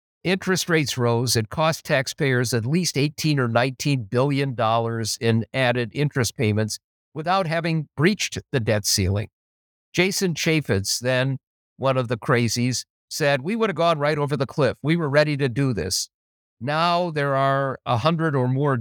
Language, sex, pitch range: English, male, 115-150 Hz